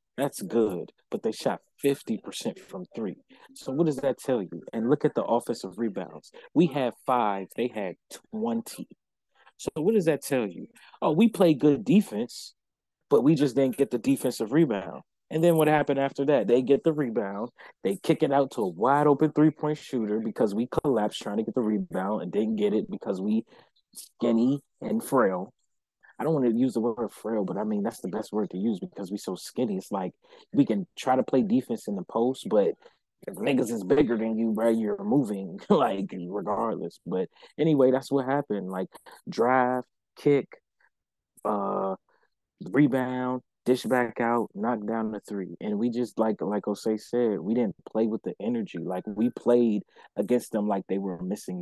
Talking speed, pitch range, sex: 190 wpm, 110-150 Hz, male